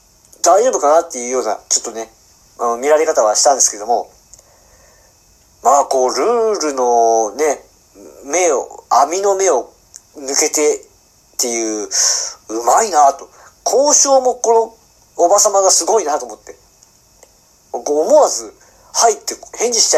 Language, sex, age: Japanese, male, 50-69